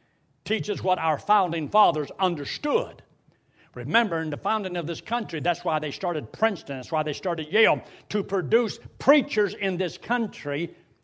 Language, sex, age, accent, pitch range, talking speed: English, male, 60-79, American, 155-200 Hz, 160 wpm